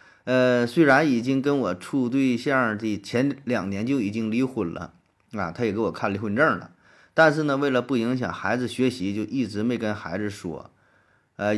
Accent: native